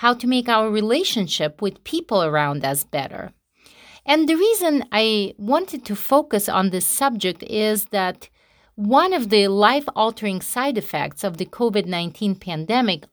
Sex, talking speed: female, 145 wpm